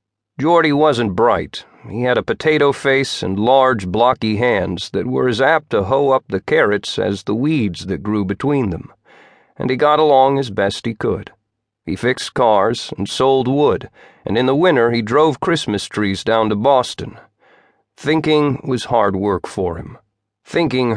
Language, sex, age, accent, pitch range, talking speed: English, male, 40-59, American, 105-140 Hz, 170 wpm